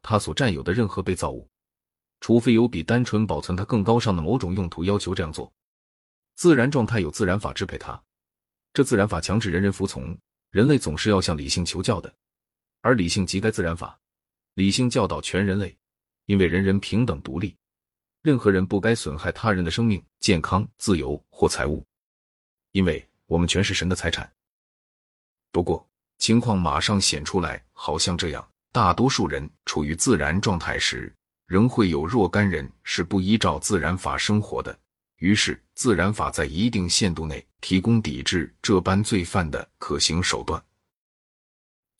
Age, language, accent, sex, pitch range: 30-49, Chinese, native, male, 85-105 Hz